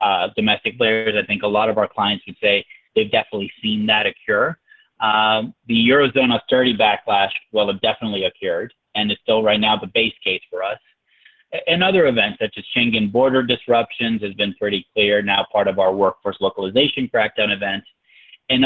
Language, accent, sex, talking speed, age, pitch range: English, American, male, 185 wpm, 30-49, 105-160 Hz